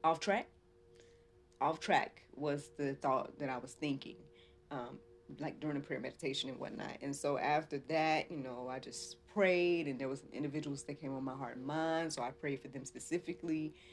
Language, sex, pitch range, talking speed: English, female, 130-155 Hz, 195 wpm